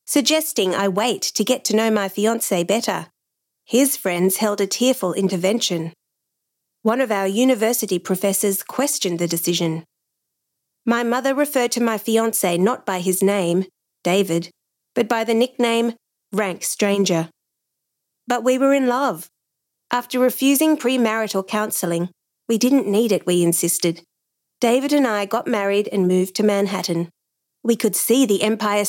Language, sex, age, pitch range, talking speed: English, female, 40-59, 180-235 Hz, 145 wpm